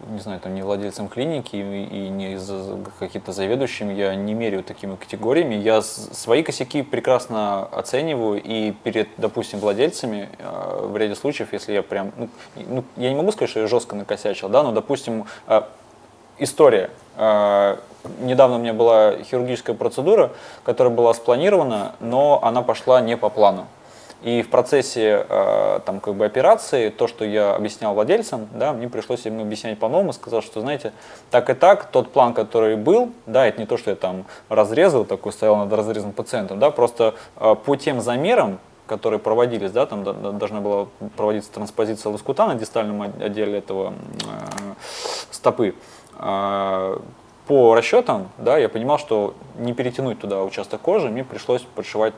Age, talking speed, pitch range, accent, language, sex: 20-39, 160 wpm, 100-125 Hz, native, Russian, male